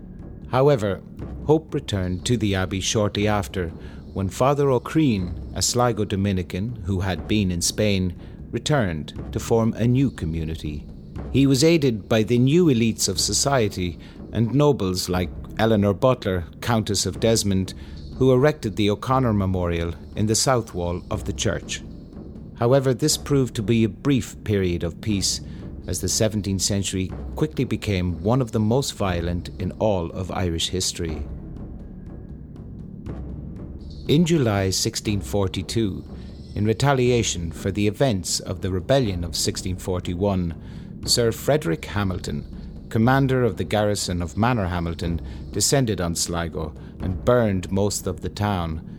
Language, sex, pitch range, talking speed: English, male, 85-115 Hz, 135 wpm